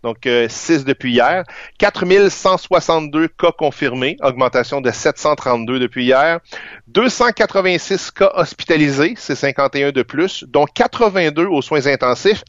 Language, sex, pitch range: French, male, 125-170 Hz